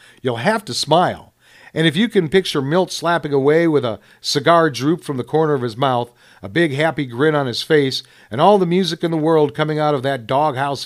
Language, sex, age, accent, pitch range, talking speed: English, male, 50-69, American, 125-160 Hz, 225 wpm